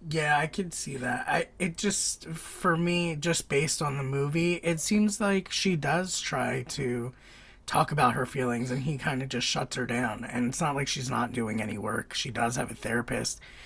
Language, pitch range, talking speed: English, 125-160 Hz, 210 wpm